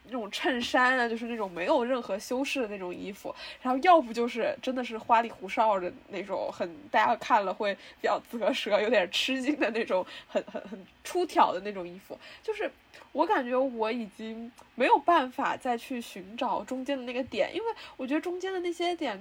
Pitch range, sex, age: 230-295 Hz, female, 10-29